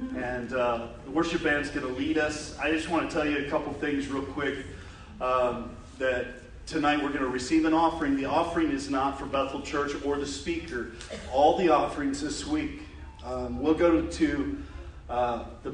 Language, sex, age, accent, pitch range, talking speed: English, male, 40-59, American, 135-165 Hz, 200 wpm